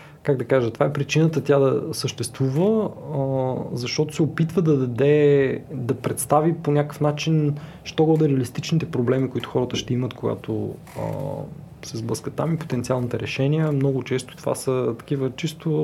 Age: 20-39